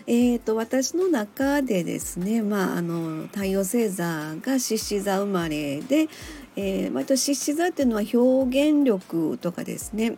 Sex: female